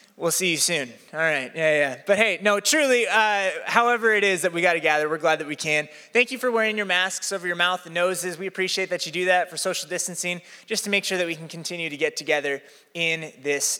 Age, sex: 20-39, male